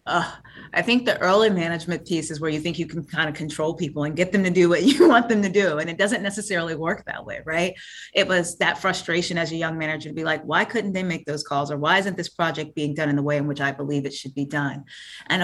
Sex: female